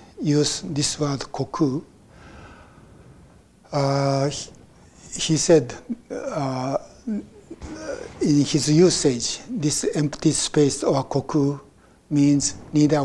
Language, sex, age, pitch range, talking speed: English, male, 60-79, 135-155 Hz, 85 wpm